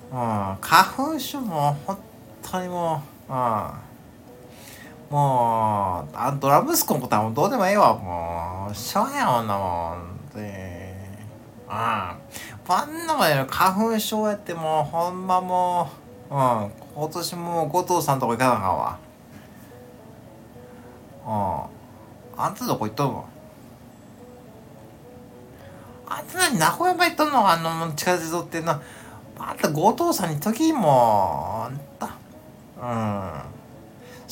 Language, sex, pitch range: Japanese, male, 120-170 Hz